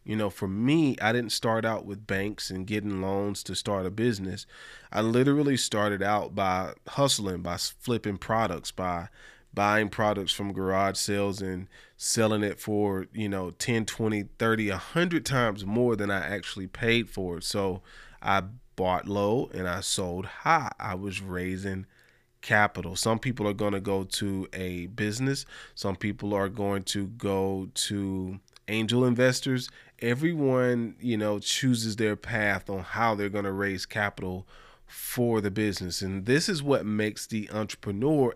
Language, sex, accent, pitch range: English, male, American, 100-125 Hz